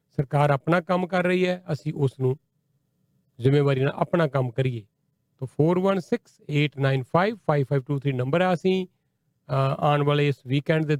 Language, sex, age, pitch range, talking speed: Punjabi, male, 40-59, 145-175 Hz, 125 wpm